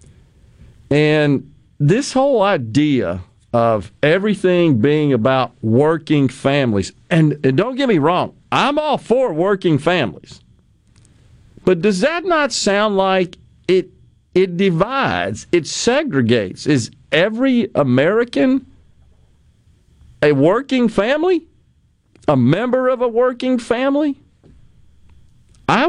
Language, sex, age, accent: English, male, 50-69, American